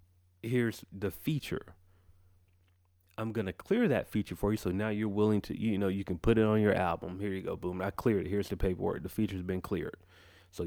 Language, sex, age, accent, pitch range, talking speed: English, male, 30-49, American, 90-110 Hz, 220 wpm